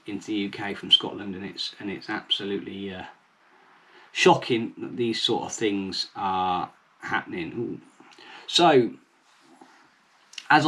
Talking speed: 125 wpm